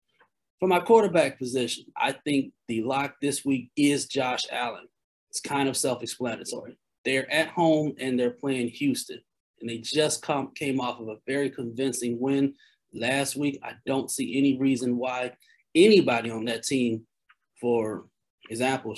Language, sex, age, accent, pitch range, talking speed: English, male, 30-49, American, 130-170 Hz, 150 wpm